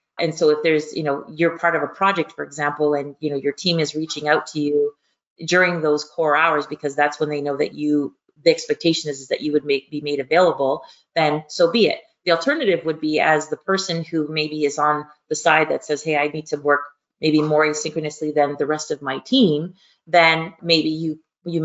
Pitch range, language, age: 145-165 Hz, English, 30-49